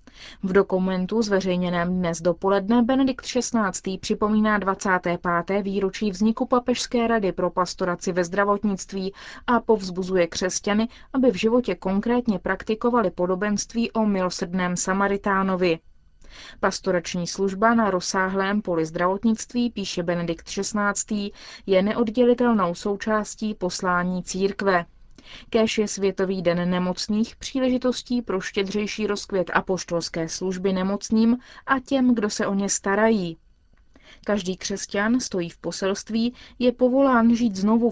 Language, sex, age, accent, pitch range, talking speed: Czech, female, 20-39, native, 185-230 Hz, 110 wpm